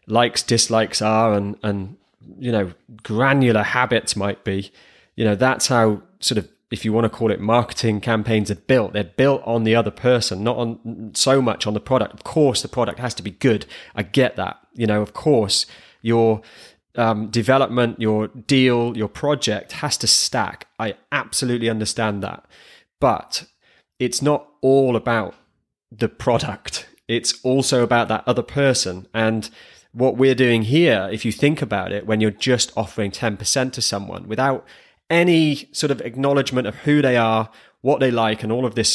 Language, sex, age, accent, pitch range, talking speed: English, male, 20-39, British, 110-130 Hz, 175 wpm